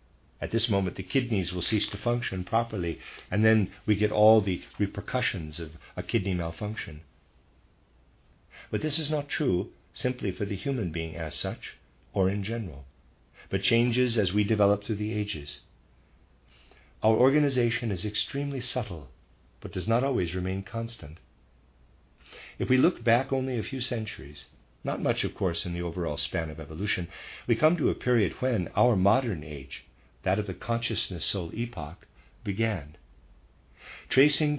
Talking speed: 155 wpm